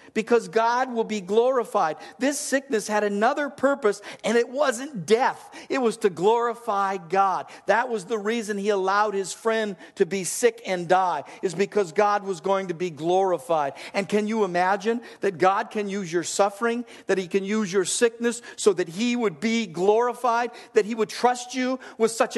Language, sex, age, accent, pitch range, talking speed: English, male, 50-69, American, 210-265 Hz, 185 wpm